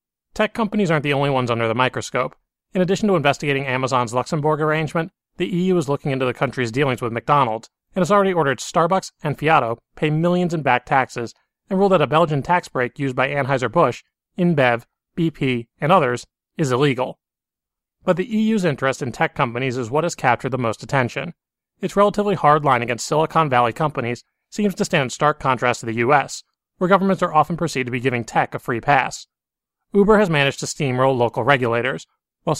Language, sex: English, male